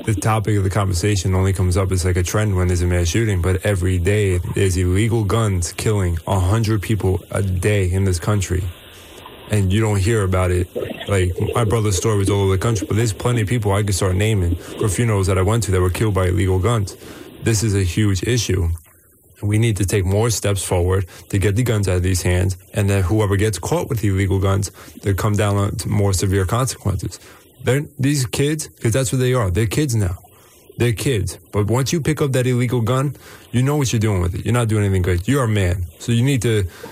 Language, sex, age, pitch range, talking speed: English, male, 20-39, 95-120 Hz, 230 wpm